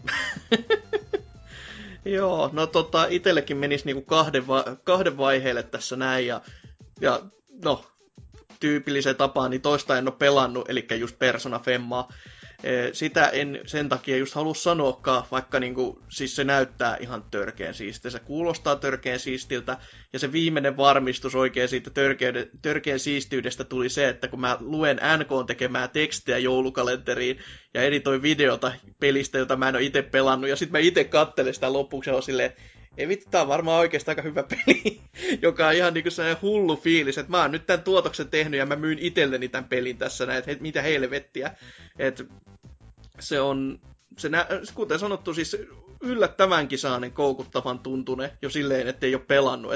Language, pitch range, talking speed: Finnish, 125-155 Hz, 155 wpm